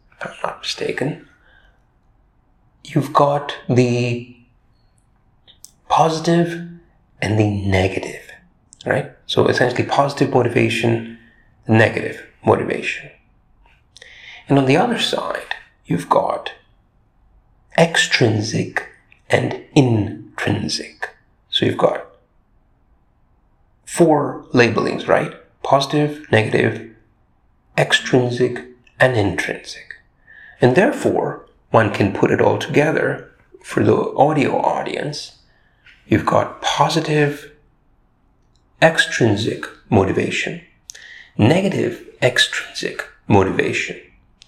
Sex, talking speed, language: male, 80 wpm, English